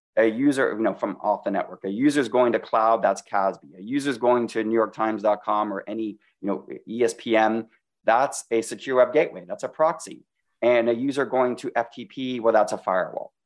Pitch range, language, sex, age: 110-140 Hz, English, male, 30-49